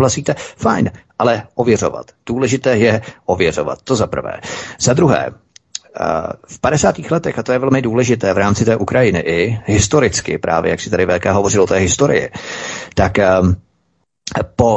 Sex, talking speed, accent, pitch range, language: male, 145 wpm, native, 105-125 Hz, Czech